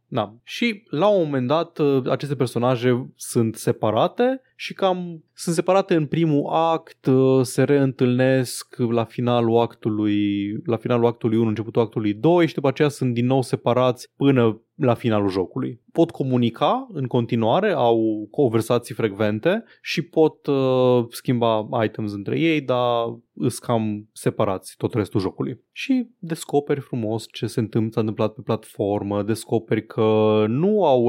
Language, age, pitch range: Romanian, 20-39, 115-155 Hz